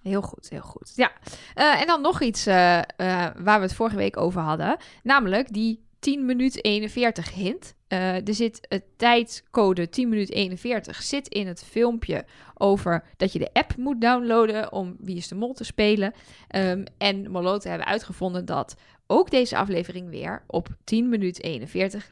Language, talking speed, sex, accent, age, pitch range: Dutch, 175 wpm, female, Dutch, 10-29, 190-255 Hz